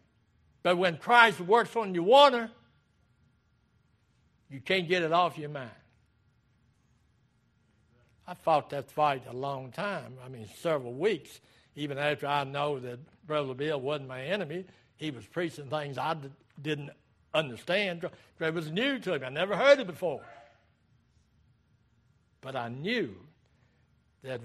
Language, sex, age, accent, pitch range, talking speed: English, male, 60-79, American, 120-180 Hz, 135 wpm